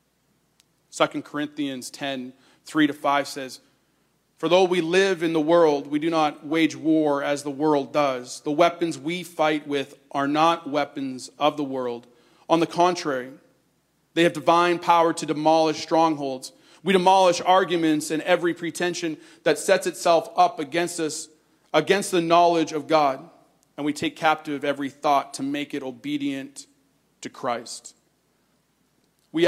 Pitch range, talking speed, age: 150-185 Hz, 145 wpm, 40-59